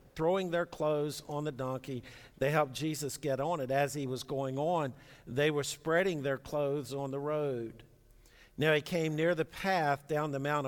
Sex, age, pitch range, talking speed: male, 50-69, 120-145 Hz, 190 wpm